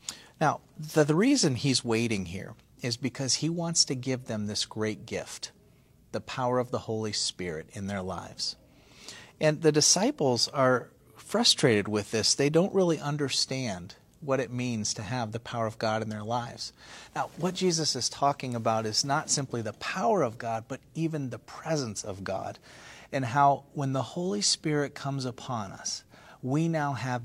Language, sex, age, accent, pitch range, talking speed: English, male, 40-59, American, 115-150 Hz, 175 wpm